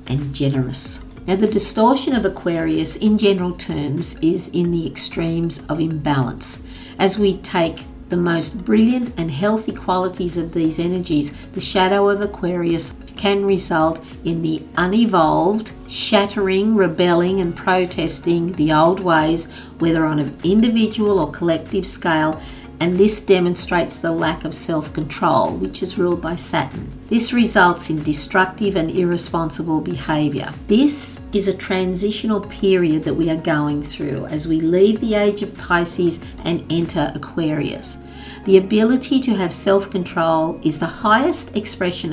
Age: 50-69